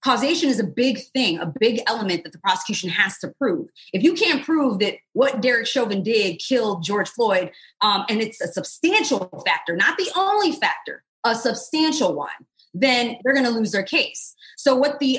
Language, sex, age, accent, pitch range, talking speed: English, female, 20-39, American, 190-265 Hz, 195 wpm